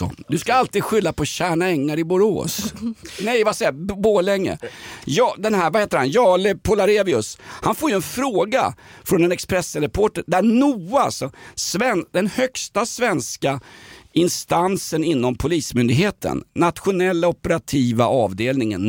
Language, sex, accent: Swedish, male, native